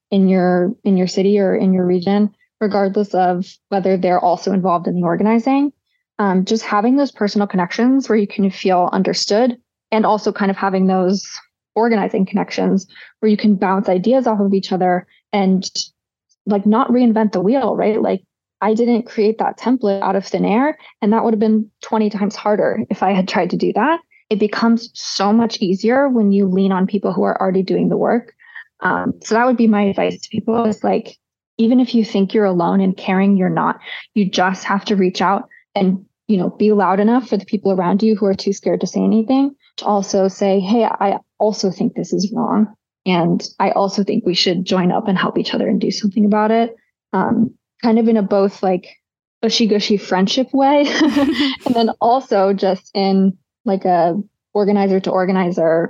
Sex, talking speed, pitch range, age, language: female, 200 wpm, 190-225 Hz, 20-39, English